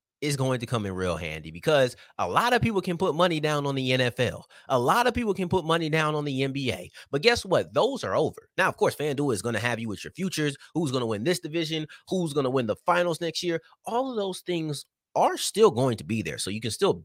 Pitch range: 115-155 Hz